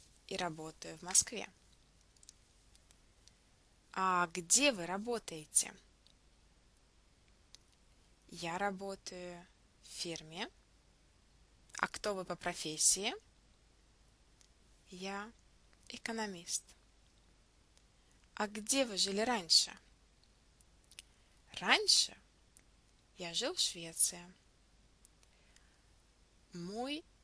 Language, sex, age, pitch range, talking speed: English, female, 20-39, 155-210 Hz, 65 wpm